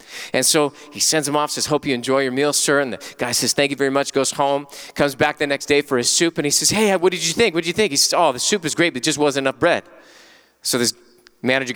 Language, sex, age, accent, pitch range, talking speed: English, male, 30-49, American, 145-215 Hz, 300 wpm